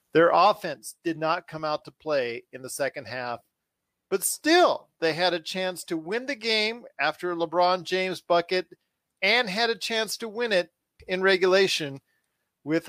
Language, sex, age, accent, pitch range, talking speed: English, male, 40-59, American, 150-185 Hz, 170 wpm